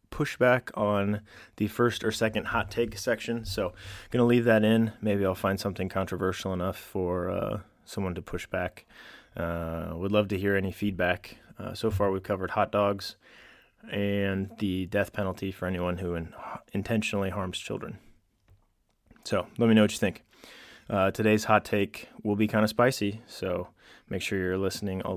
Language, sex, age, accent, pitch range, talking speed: English, male, 20-39, American, 95-110 Hz, 180 wpm